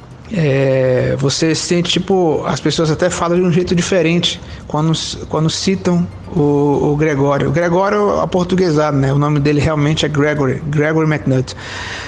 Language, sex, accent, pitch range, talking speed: Portuguese, male, Brazilian, 150-175 Hz, 155 wpm